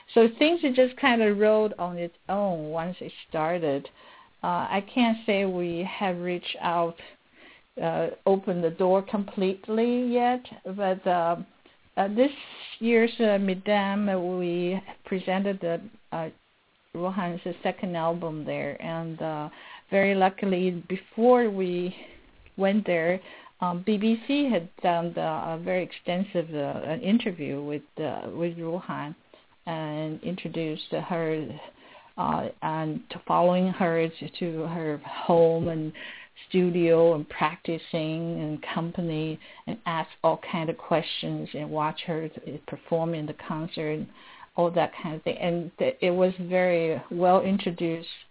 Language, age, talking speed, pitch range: English, 50-69, 135 wpm, 165-195 Hz